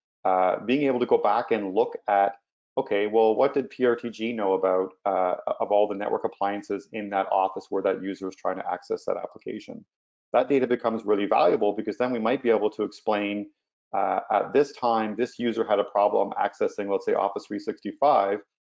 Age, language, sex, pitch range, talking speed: 30-49, English, male, 95-120 Hz, 195 wpm